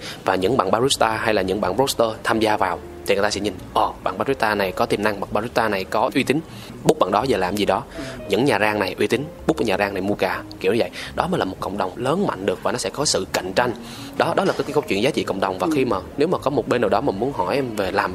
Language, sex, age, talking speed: Vietnamese, male, 20-39, 315 wpm